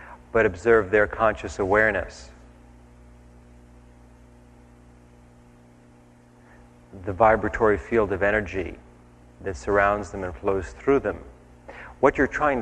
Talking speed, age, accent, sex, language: 95 wpm, 40-59, American, male, English